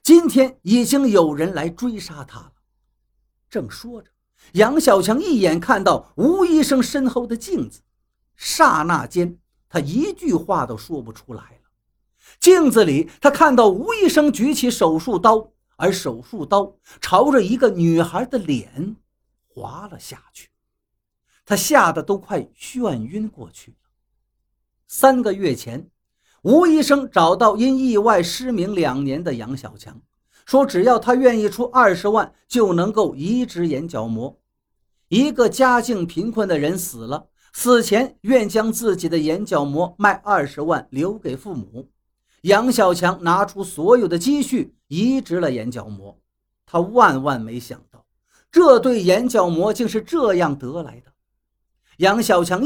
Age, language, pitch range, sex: 50-69, Chinese, 160-250 Hz, male